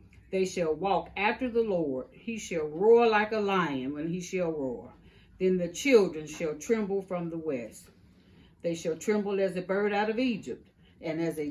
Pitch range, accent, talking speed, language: 155-200 Hz, American, 190 wpm, English